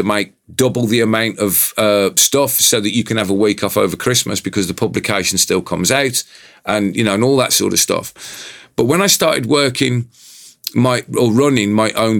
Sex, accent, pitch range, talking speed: male, British, 100-125 Hz, 205 wpm